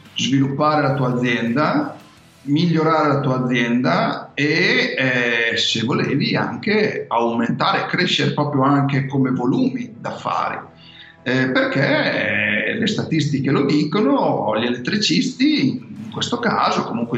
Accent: native